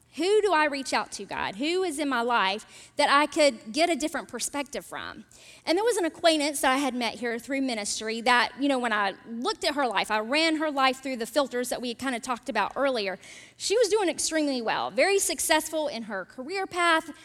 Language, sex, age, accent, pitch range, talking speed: English, female, 40-59, American, 245-315 Hz, 235 wpm